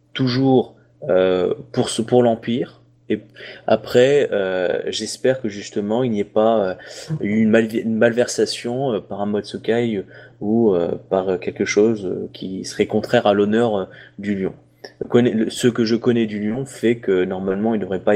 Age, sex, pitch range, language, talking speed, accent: 20-39, male, 100-120 Hz, French, 170 wpm, French